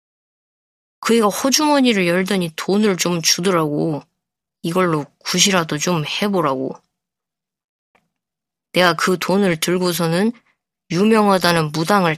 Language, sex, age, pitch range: Korean, female, 20-39, 170-205 Hz